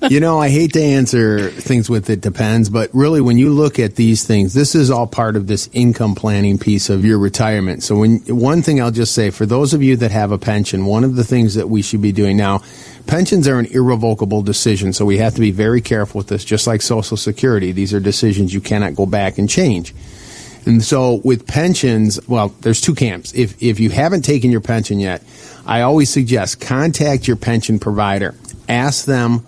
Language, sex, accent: English, male, American